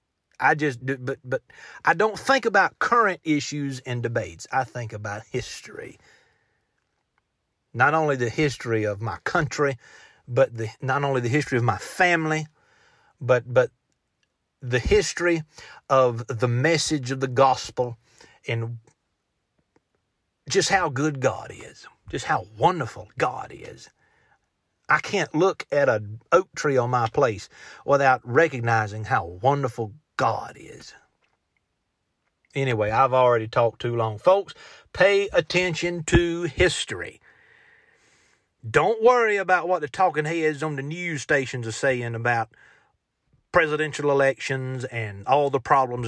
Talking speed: 135 wpm